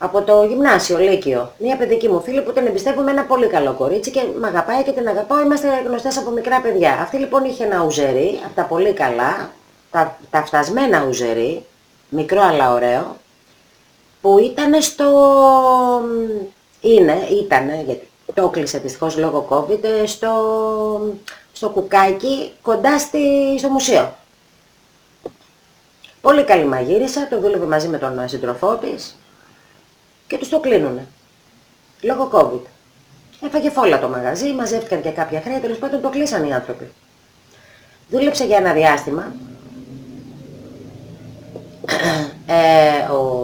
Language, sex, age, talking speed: Greek, female, 30-49, 135 wpm